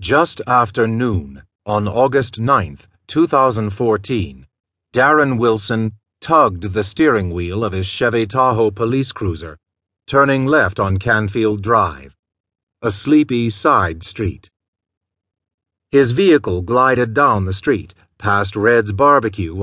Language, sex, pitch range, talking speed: English, male, 95-125 Hz, 115 wpm